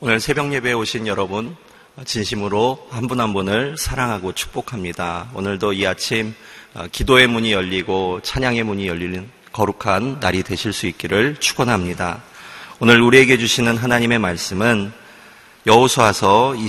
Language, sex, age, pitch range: Korean, male, 30-49, 95-120 Hz